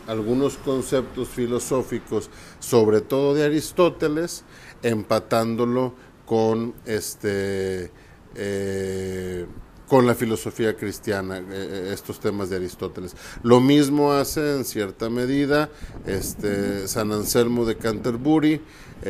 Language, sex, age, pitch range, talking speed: Spanish, male, 50-69, 105-130 Hz, 90 wpm